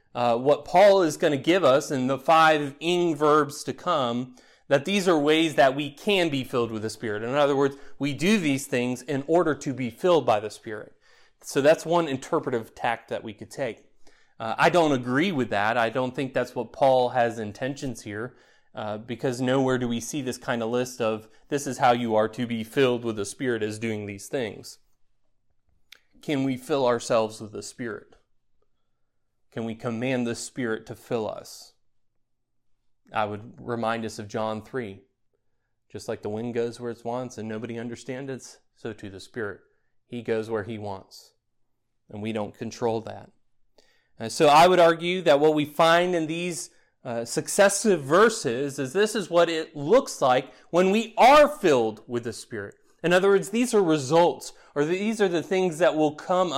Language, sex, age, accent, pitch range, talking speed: English, male, 30-49, American, 115-160 Hz, 190 wpm